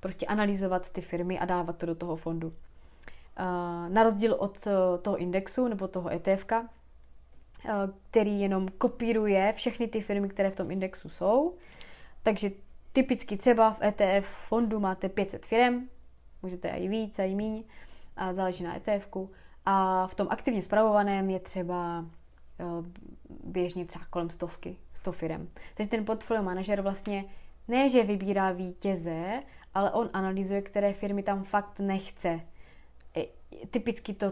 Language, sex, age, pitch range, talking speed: Czech, female, 20-39, 175-205 Hz, 140 wpm